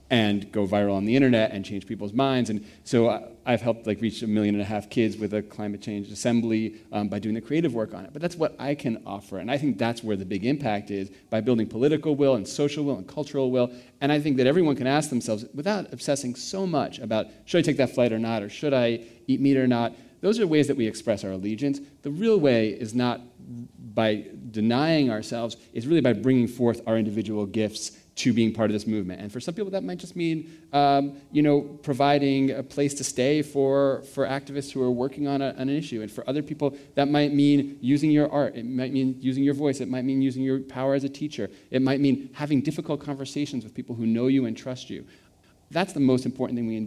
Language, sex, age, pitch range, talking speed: English, male, 40-59, 110-140 Hz, 240 wpm